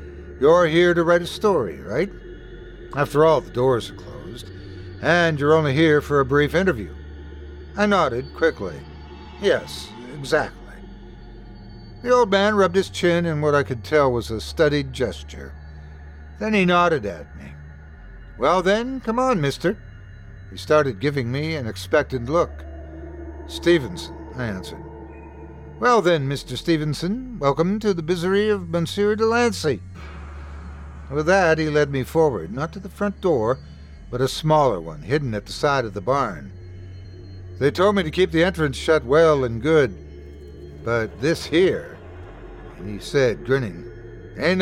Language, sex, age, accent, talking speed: English, male, 60-79, American, 150 wpm